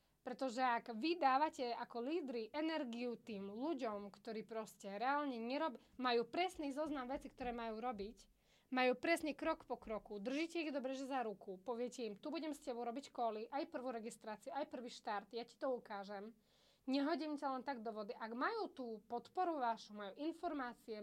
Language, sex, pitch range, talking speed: Slovak, female, 230-295 Hz, 175 wpm